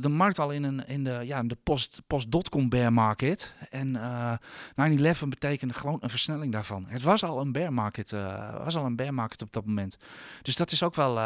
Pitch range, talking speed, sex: 125-160 Hz, 215 wpm, male